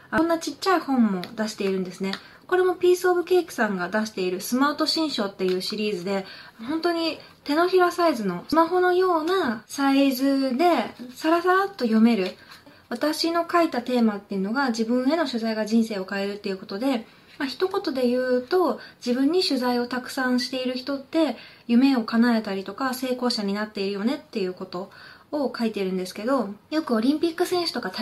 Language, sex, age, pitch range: Japanese, female, 20-39, 215-320 Hz